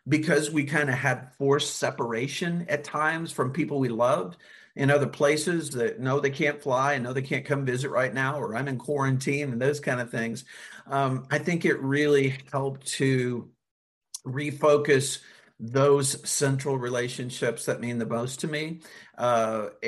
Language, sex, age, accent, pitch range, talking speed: English, male, 50-69, American, 120-145 Hz, 170 wpm